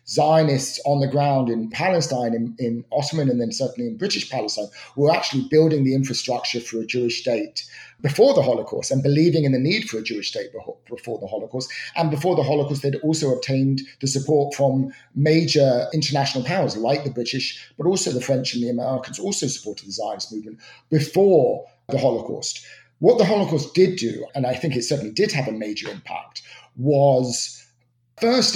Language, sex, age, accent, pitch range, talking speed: English, male, 30-49, British, 125-155 Hz, 185 wpm